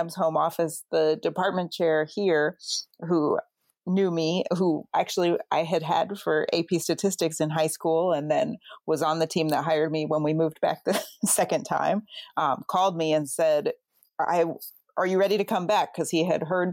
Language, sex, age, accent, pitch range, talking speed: English, female, 40-59, American, 160-195 Hz, 185 wpm